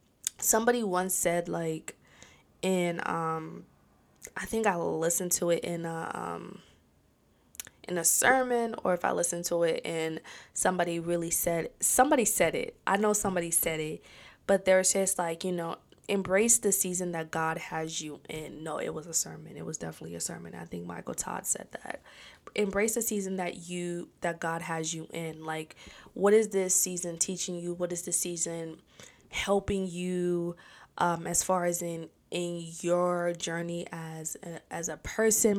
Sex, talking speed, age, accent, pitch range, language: female, 170 wpm, 20-39, American, 170-200 Hz, English